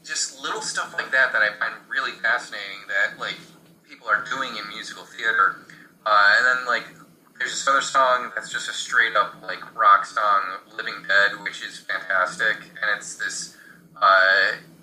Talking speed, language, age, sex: 170 wpm, English, 20-39, male